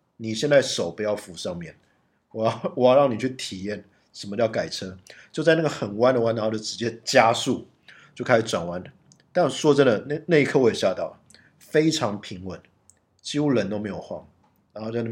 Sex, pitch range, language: male, 105-130 Hz, Chinese